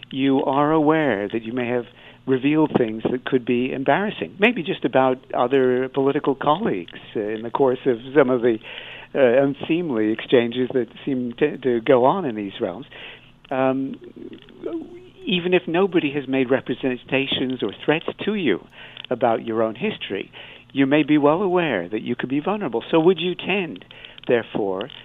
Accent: American